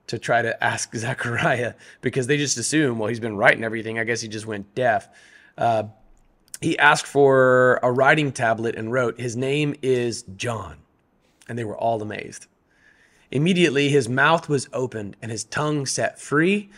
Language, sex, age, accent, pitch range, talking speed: English, male, 30-49, American, 115-150 Hz, 170 wpm